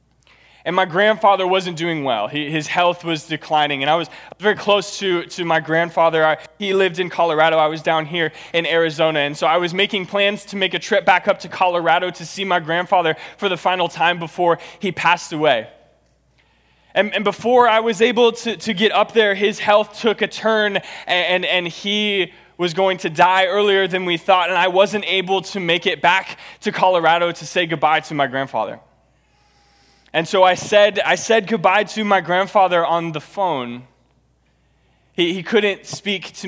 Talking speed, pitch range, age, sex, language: 195 wpm, 165-205 Hz, 20-39, male, English